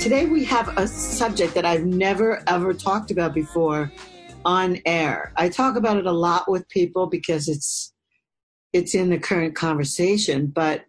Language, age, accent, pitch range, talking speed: English, 50-69, American, 160-195 Hz, 165 wpm